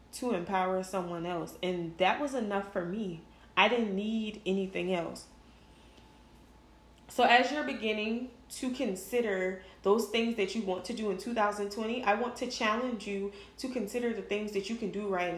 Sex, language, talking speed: female, English, 170 wpm